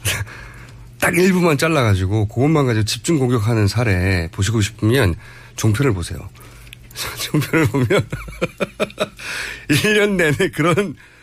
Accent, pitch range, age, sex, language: native, 110-165 Hz, 40-59, male, Korean